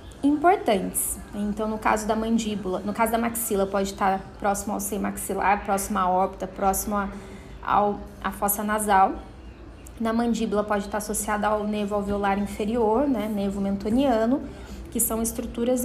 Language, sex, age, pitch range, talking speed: Portuguese, female, 20-39, 200-235 Hz, 145 wpm